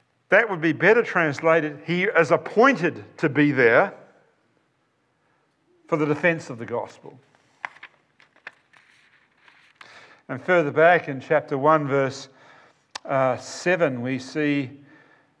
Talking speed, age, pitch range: 105 wpm, 50-69, 130-165 Hz